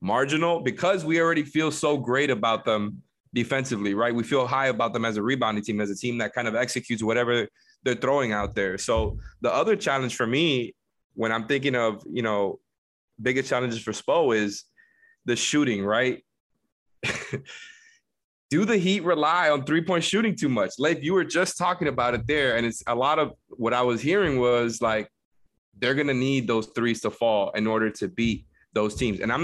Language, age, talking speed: English, 20-39, 195 wpm